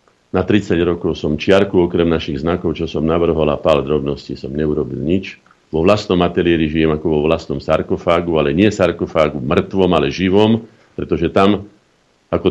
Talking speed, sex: 165 wpm, male